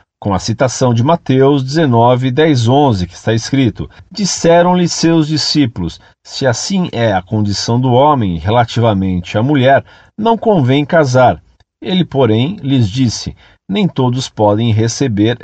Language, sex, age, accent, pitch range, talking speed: Portuguese, male, 50-69, Brazilian, 110-155 Hz, 135 wpm